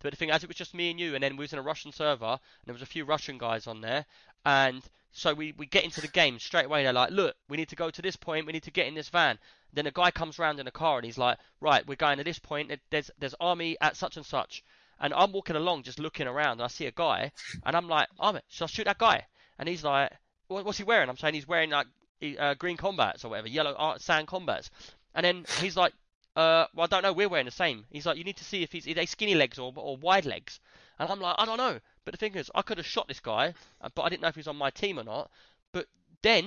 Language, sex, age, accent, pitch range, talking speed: English, male, 20-39, British, 140-180 Hz, 295 wpm